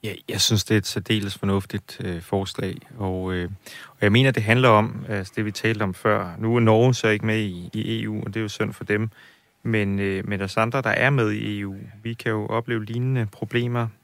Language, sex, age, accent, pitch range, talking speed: Danish, male, 30-49, native, 95-115 Hz, 220 wpm